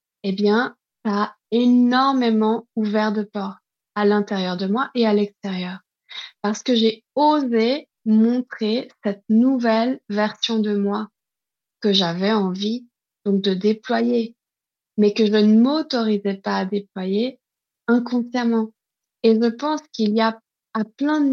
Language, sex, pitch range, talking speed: French, female, 200-230 Hz, 140 wpm